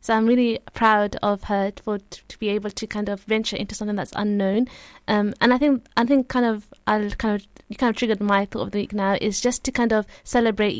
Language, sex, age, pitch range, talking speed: English, female, 20-39, 205-235 Hz, 255 wpm